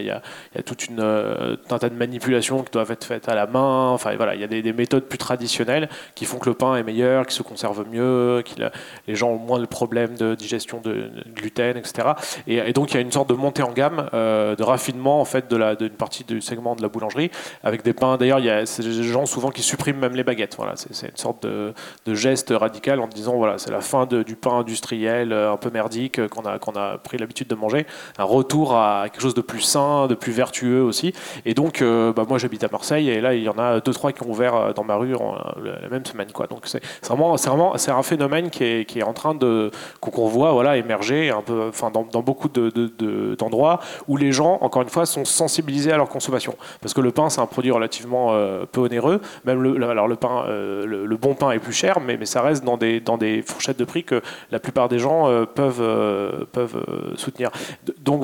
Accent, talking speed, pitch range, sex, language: French, 255 wpm, 115-135 Hz, male, French